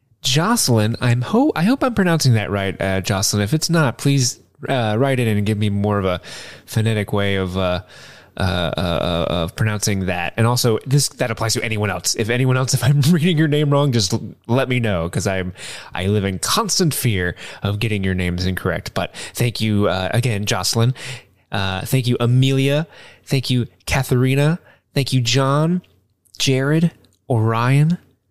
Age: 20-39